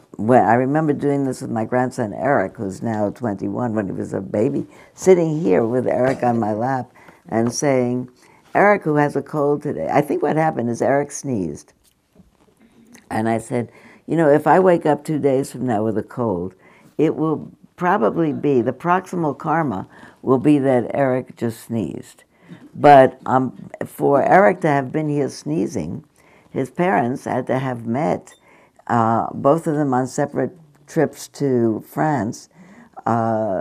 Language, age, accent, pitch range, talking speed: English, 60-79, American, 115-145 Hz, 165 wpm